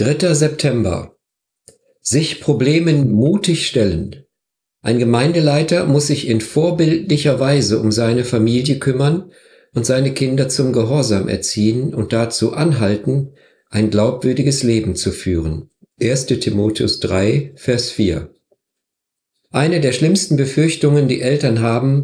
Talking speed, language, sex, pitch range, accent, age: 115 wpm, German, male, 110-140 Hz, German, 50-69